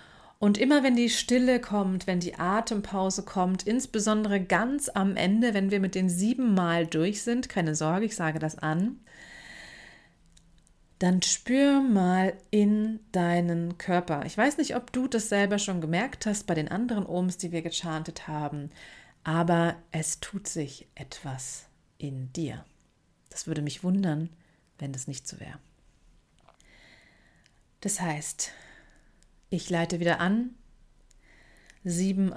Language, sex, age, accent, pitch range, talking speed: German, female, 30-49, German, 170-215 Hz, 140 wpm